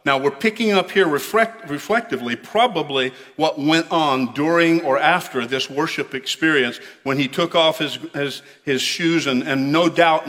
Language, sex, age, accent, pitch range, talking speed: English, male, 50-69, American, 130-155 Hz, 165 wpm